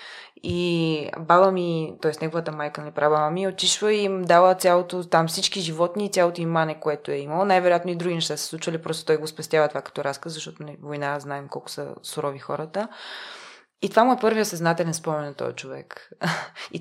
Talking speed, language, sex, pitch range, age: 200 wpm, Bulgarian, female, 155-185 Hz, 20-39